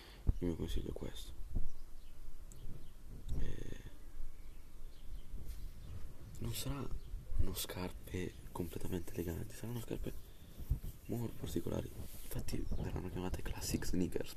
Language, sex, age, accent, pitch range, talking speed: Italian, male, 30-49, native, 80-105 Hz, 70 wpm